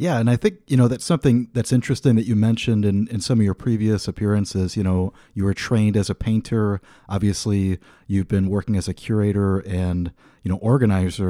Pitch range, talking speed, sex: 95-115 Hz, 205 wpm, male